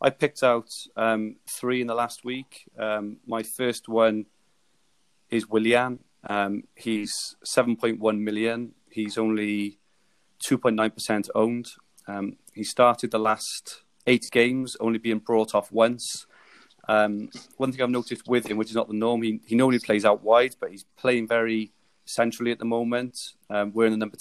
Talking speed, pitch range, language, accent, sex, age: 160 wpm, 105-120 Hz, English, British, male, 30-49